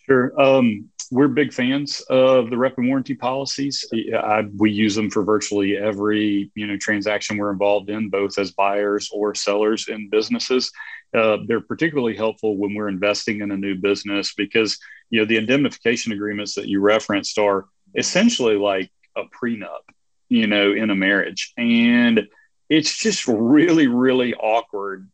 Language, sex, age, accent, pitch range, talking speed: English, male, 40-59, American, 105-140 Hz, 160 wpm